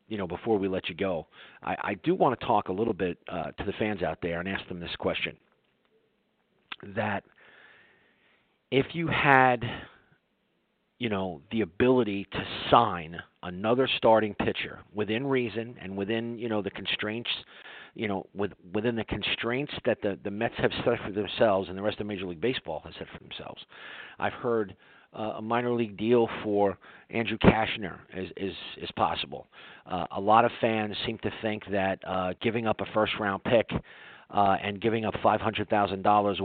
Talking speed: 175 wpm